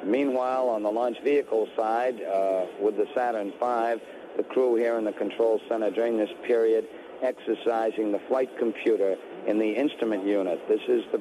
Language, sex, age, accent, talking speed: English, male, 50-69, American, 170 wpm